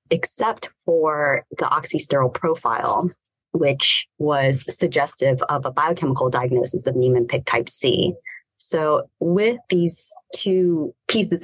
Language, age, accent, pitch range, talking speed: English, 20-39, American, 130-170 Hz, 115 wpm